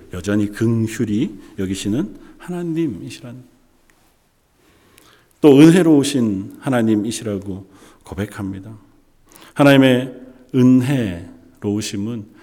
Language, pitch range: Korean, 105-155 Hz